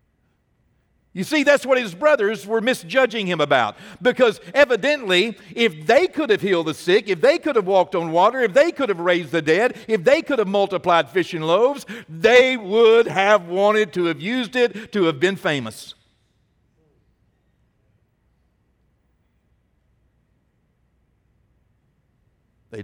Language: English